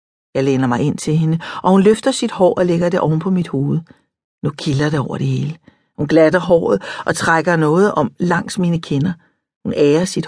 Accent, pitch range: native, 155-215 Hz